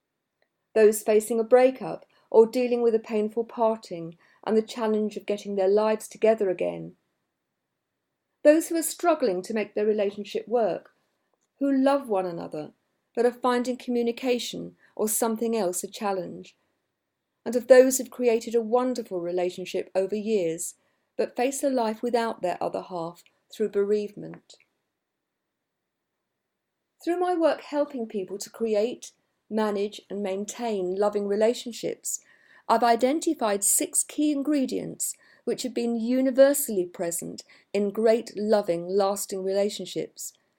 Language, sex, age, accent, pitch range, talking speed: English, female, 40-59, British, 200-250 Hz, 130 wpm